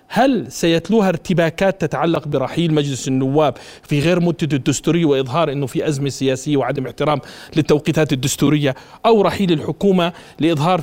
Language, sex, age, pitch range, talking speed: Arabic, male, 40-59, 140-190 Hz, 135 wpm